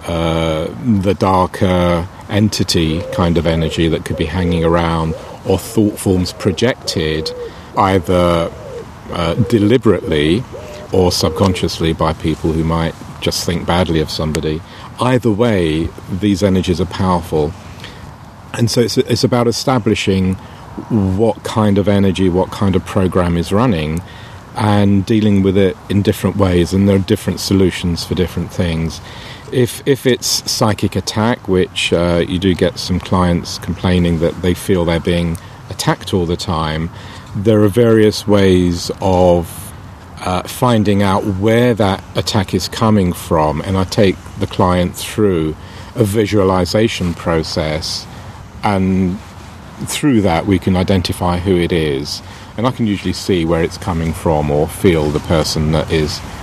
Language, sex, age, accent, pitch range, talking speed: English, male, 40-59, British, 85-105 Hz, 145 wpm